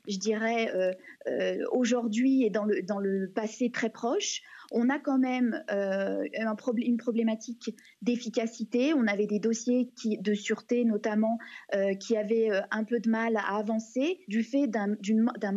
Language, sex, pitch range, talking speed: French, female, 220-280 Hz, 150 wpm